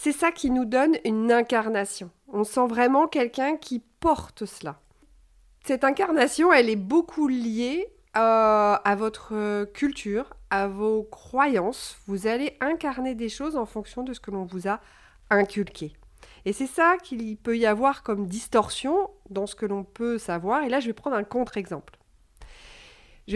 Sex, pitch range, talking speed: female, 210-285 Hz, 165 wpm